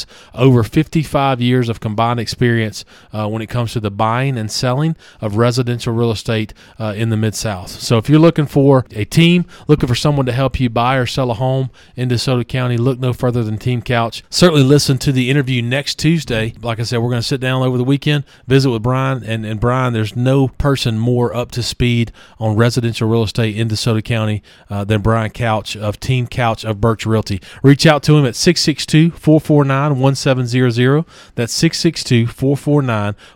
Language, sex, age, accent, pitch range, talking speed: English, male, 40-59, American, 115-140 Hz, 205 wpm